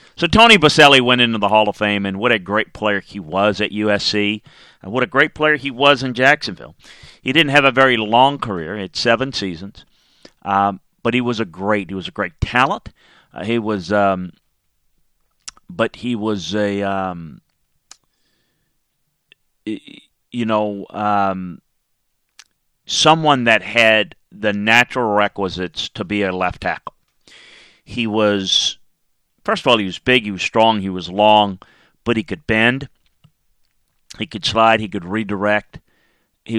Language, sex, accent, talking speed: English, male, American, 155 wpm